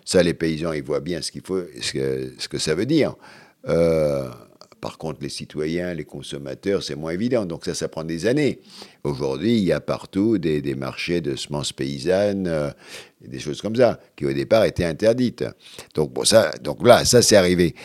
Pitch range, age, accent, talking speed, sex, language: 75-95 Hz, 50-69, French, 205 wpm, male, French